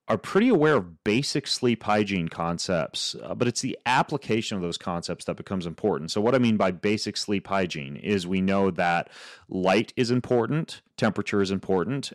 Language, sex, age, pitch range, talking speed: English, male, 30-49, 90-115 Hz, 185 wpm